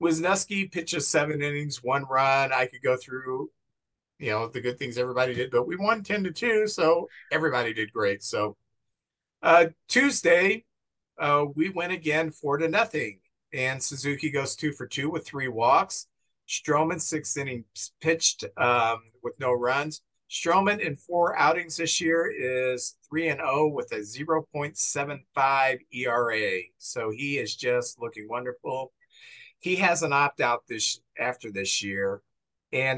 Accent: American